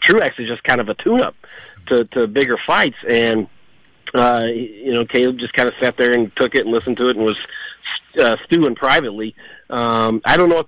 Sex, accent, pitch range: male, American, 115-135 Hz